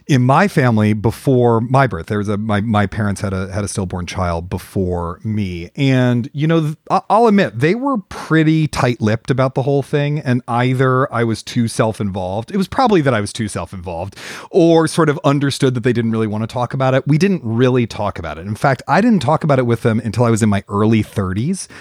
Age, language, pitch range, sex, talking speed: 40-59, English, 100-140 Hz, male, 235 wpm